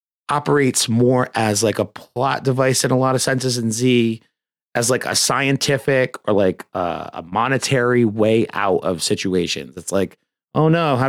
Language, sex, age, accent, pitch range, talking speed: English, male, 30-49, American, 110-140 Hz, 175 wpm